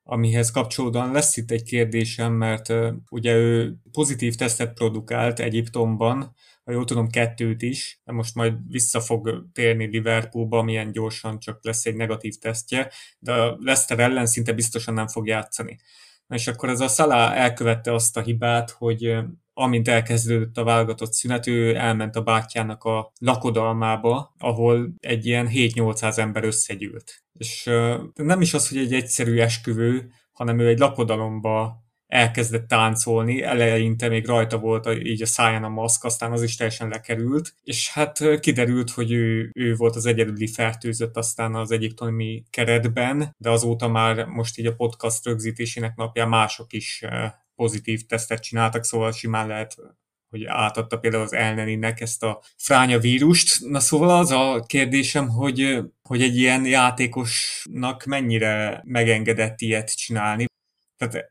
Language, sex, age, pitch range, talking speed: Hungarian, male, 20-39, 115-120 Hz, 145 wpm